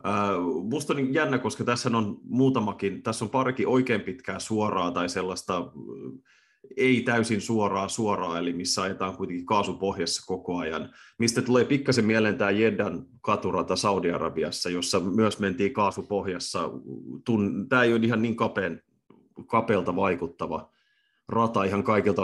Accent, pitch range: native, 95-115 Hz